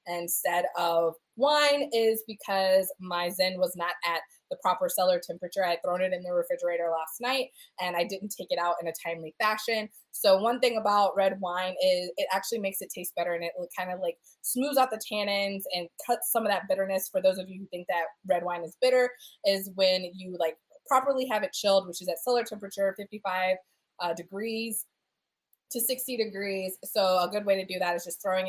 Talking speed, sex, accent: 215 wpm, female, American